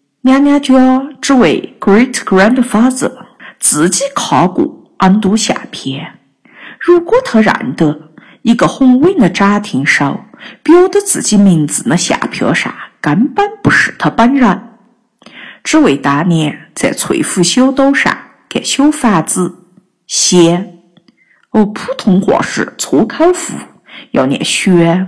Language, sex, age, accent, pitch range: Chinese, female, 50-69, native, 170-260 Hz